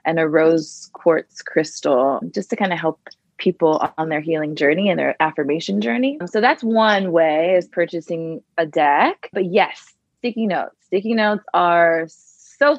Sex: female